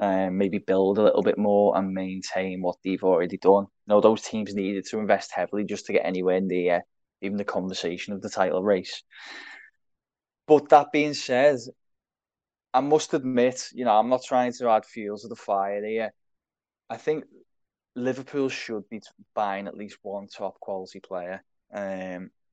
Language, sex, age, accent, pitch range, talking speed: English, male, 10-29, British, 100-120 Hz, 180 wpm